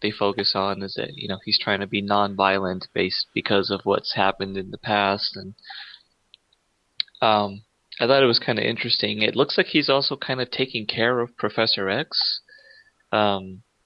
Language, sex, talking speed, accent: English, male, 180 wpm, American